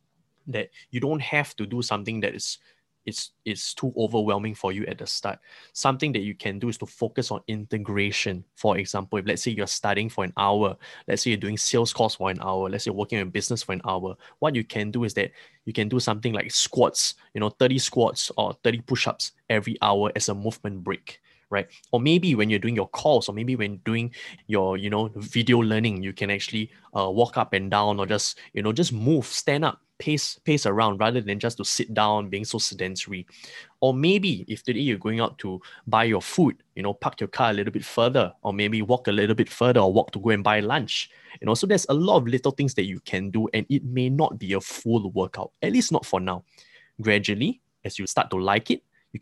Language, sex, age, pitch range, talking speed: English, male, 20-39, 100-120 Hz, 235 wpm